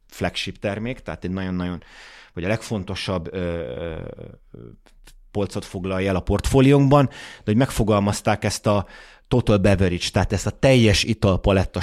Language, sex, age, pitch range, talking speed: Hungarian, male, 30-49, 100-120 Hz, 135 wpm